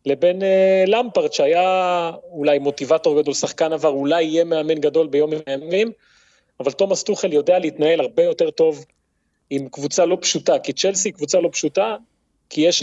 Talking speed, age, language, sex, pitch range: 165 wpm, 30-49, Hebrew, male, 150-220 Hz